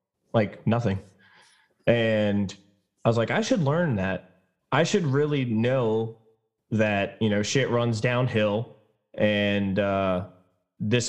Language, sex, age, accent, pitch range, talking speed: English, male, 20-39, American, 105-130 Hz, 125 wpm